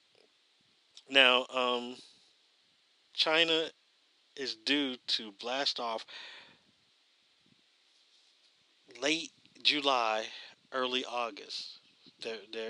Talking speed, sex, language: 60 wpm, male, English